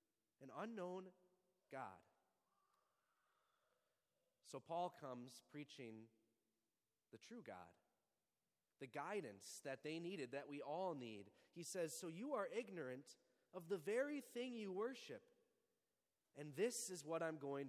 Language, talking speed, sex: English, 125 wpm, male